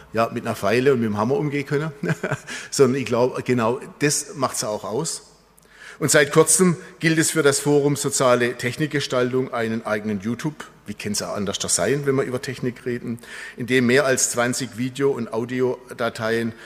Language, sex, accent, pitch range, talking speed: German, male, German, 120-145 Hz, 180 wpm